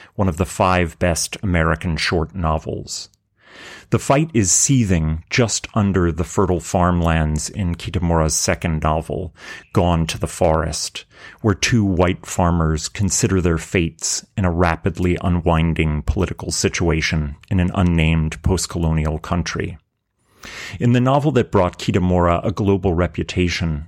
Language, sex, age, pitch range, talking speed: English, male, 30-49, 80-100 Hz, 130 wpm